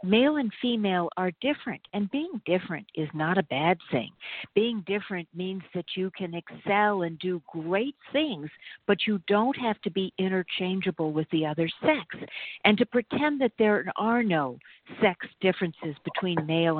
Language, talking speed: English, 165 wpm